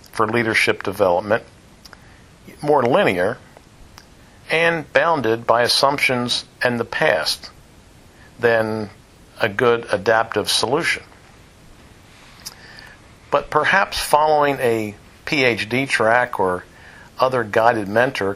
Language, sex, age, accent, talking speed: English, male, 50-69, American, 90 wpm